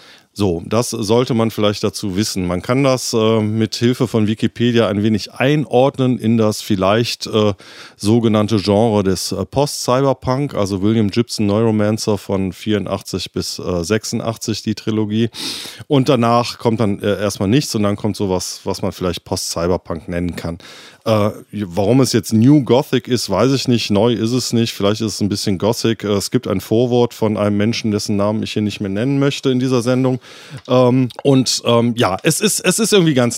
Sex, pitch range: male, 100-120 Hz